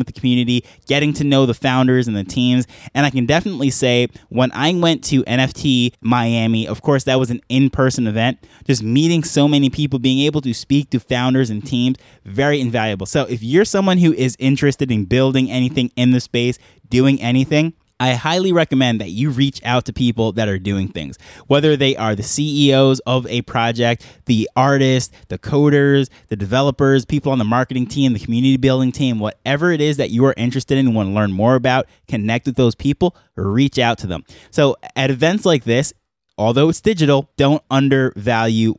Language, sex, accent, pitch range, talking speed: English, male, American, 115-140 Hz, 195 wpm